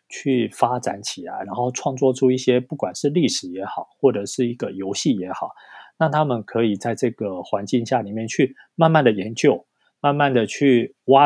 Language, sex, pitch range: Chinese, male, 105-130 Hz